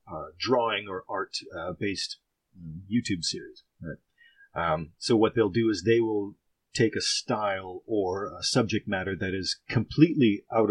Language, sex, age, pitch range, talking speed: English, male, 40-59, 105-125 Hz, 150 wpm